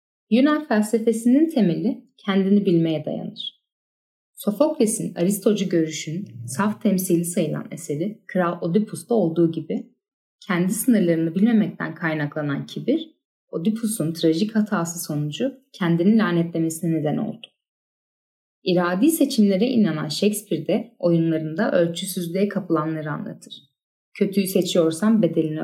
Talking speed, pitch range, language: 100 wpm, 170-220 Hz, Turkish